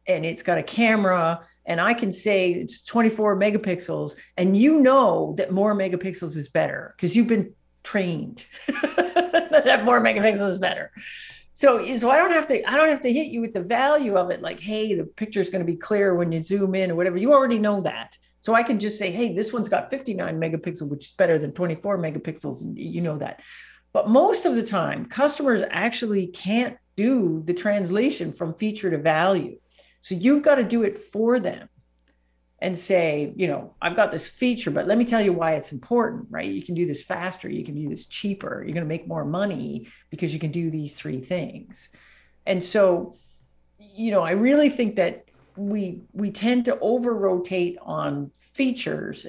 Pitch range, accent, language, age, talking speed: 170-230 Hz, American, English, 50-69, 200 wpm